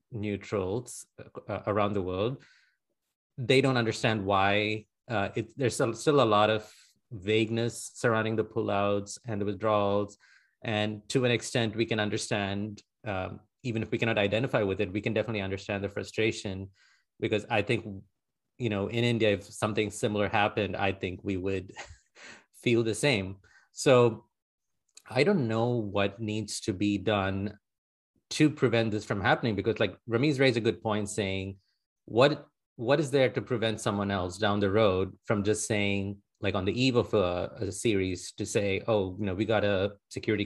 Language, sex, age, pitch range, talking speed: English, male, 30-49, 100-120 Hz, 170 wpm